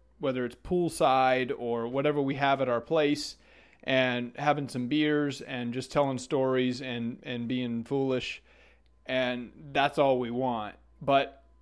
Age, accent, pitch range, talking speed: 30-49, American, 120-140 Hz, 145 wpm